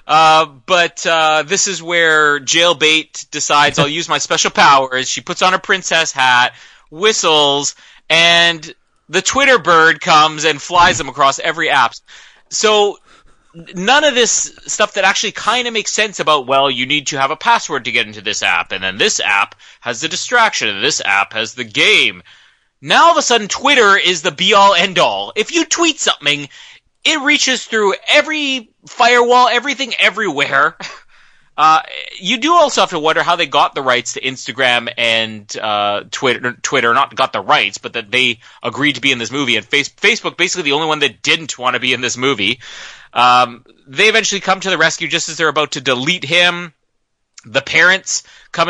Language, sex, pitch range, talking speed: English, male, 135-195 Hz, 185 wpm